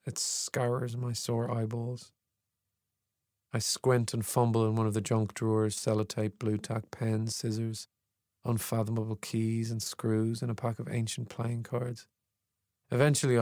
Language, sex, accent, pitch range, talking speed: English, male, Irish, 110-120 Hz, 145 wpm